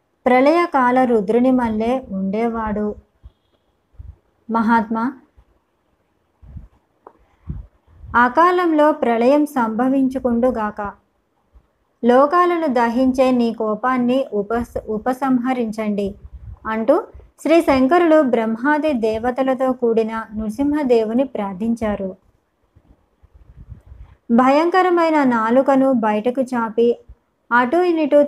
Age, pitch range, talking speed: 20-39, 225-270 Hz, 55 wpm